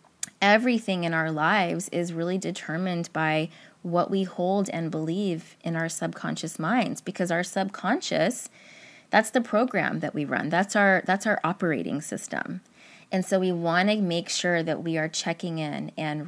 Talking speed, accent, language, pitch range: 165 wpm, American, English, 160-195 Hz